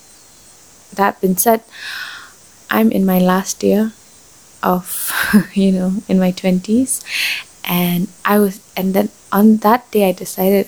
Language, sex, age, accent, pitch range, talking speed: English, female, 20-39, Indian, 185-225 Hz, 135 wpm